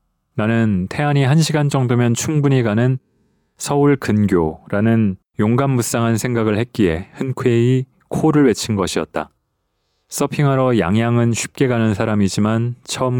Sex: male